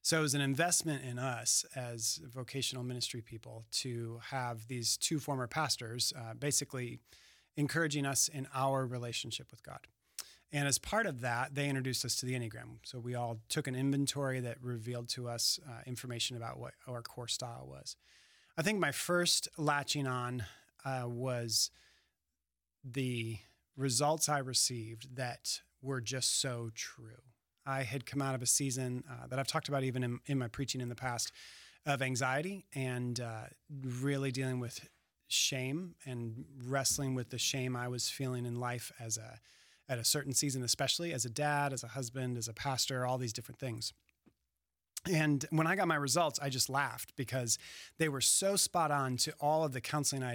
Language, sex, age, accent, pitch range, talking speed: English, male, 30-49, American, 120-145 Hz, 180 wpm